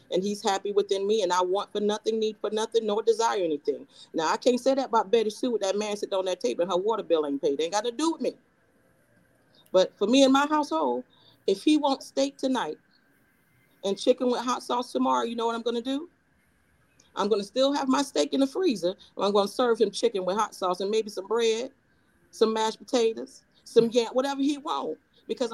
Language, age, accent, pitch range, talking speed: English, 40-59, American, 195-255 Hz, 235 wpm